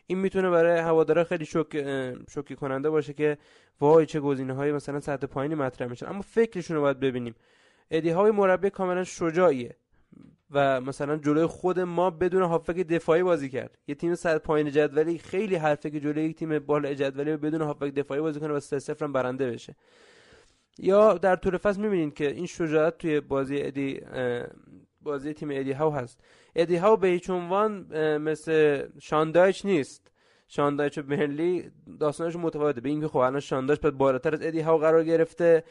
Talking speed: 170 wpm